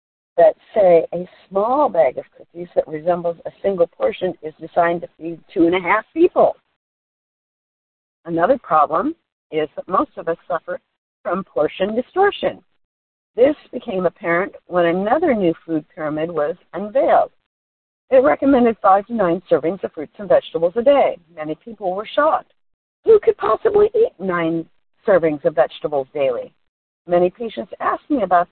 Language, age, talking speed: English, 50-69, 150 wpm